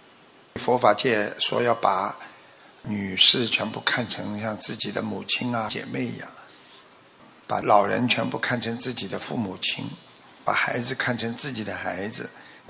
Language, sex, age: Chinese, male, 60-79